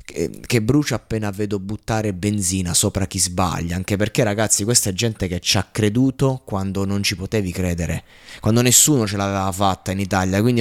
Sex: male